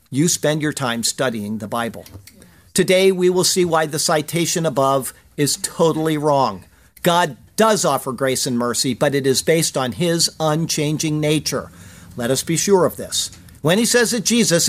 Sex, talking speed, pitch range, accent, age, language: male, 175 wpm, 135-185 Hz, American, 50-69, English